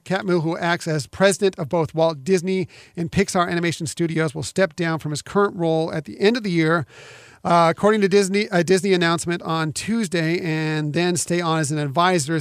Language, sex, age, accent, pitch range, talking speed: English, male, 40-59, American, 155-180 Hz, 205 wpm